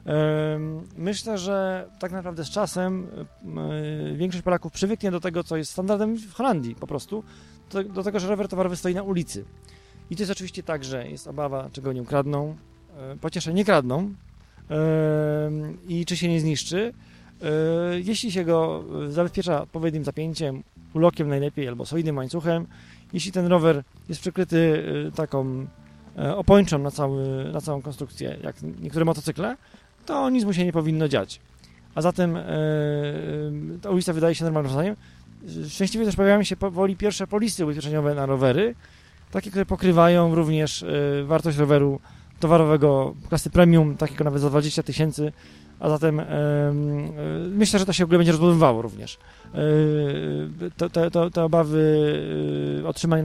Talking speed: 150 wpm